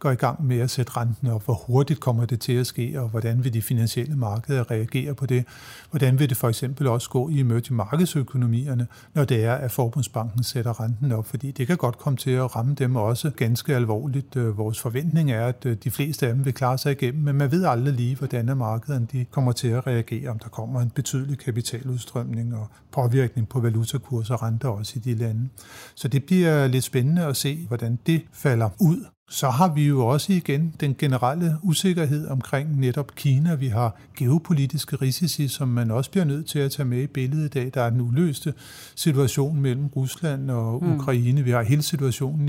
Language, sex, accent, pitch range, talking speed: Danish, male, native, 120-145 Hz, 210 wpm